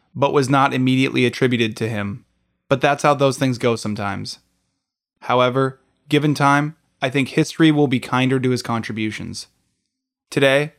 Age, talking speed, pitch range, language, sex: 20-39, 150 wpm, 120-150 Hz, English, male